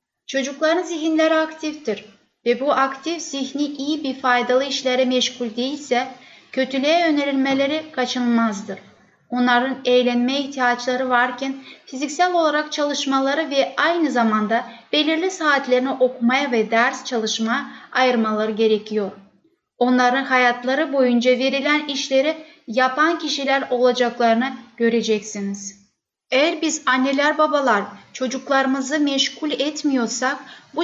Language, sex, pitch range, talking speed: Turkish, female, 245-290 Hz, 100 wpm